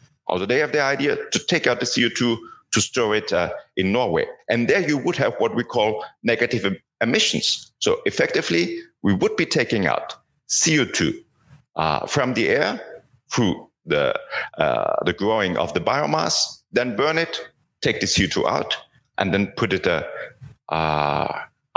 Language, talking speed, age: English, 160 wpm, 50-69